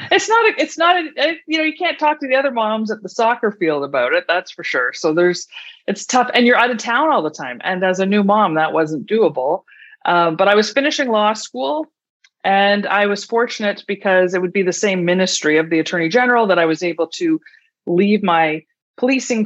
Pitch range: 155-215 Hz